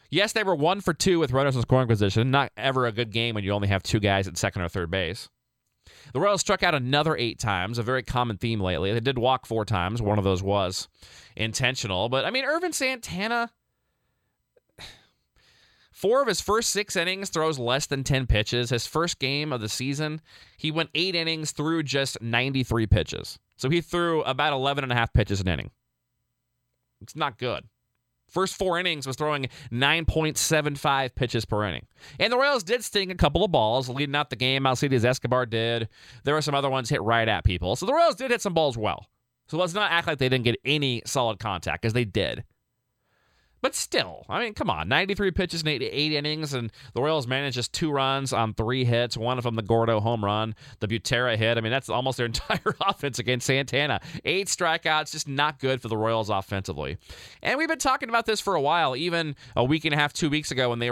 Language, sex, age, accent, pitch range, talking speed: English, male, 20-39, American, 115-155 Hz, 210 wpm